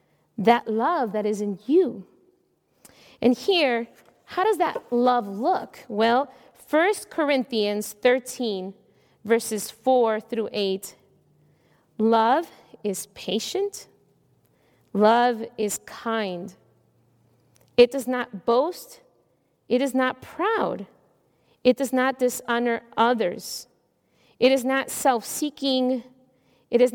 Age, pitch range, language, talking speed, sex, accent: 40-59, 220-265 Hz, English, 100 wpm, female, American